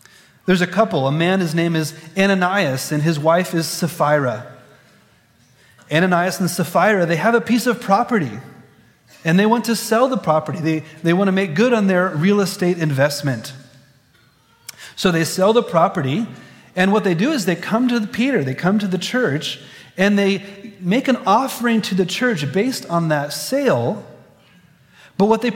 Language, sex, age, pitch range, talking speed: English, male, 30-49, 155-215 Hz, 175 wpm